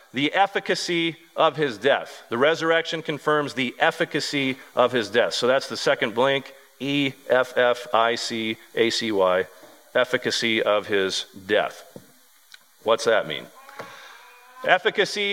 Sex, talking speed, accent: male, 105 wpm, American